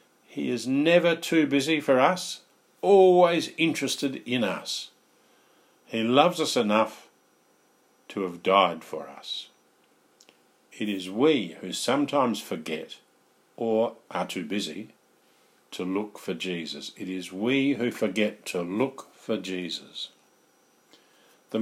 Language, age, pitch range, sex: English, 50-69, 95-135 Hz, male